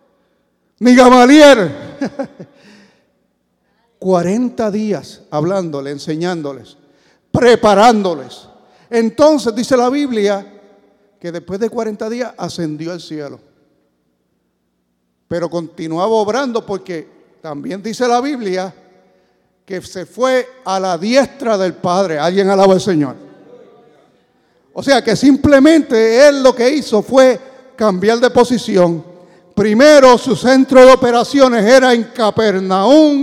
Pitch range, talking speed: 165-245 Hz, 105 wpm